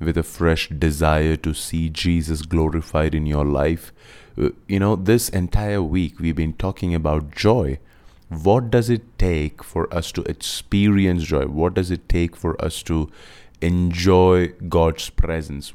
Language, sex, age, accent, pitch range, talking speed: English, male, 30-49, Indian, 80-95 Hz, 150 wpm